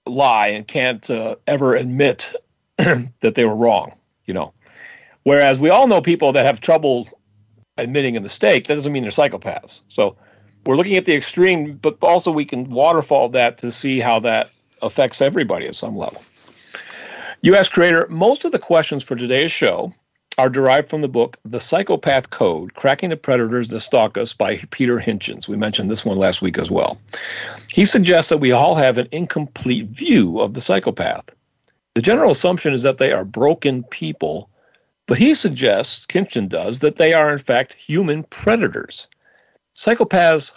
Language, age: English, 40-59